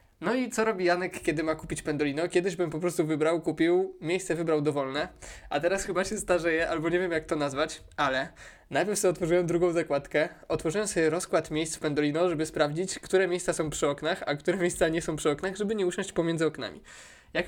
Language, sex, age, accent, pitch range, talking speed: Polish, male, 20-39, native, 155-180 Hz, 210 wpm